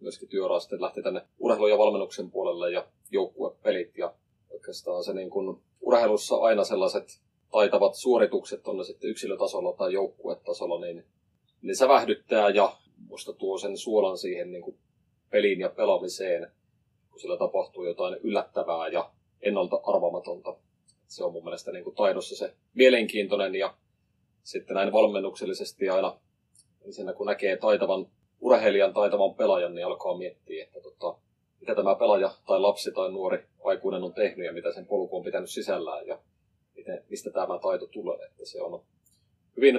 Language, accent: Finnish, native